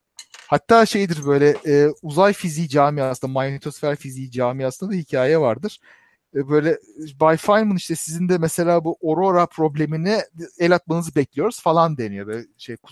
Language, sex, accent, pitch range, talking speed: Turkish, male, native, 130-195 Hz, 145 wpm